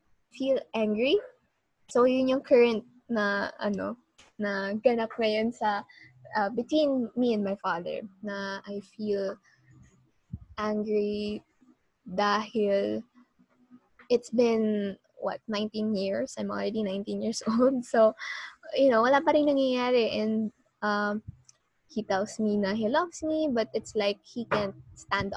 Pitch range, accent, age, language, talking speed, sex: 205-250 Hz, Filipino, 20-39, English, 125 wpm, female